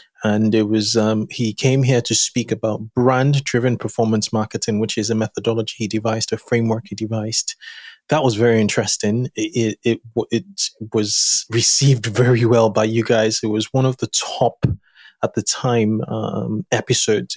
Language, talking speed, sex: English, 170 wpm, male